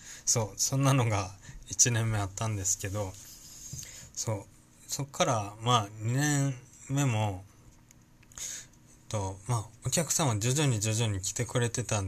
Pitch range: 100-120 Hz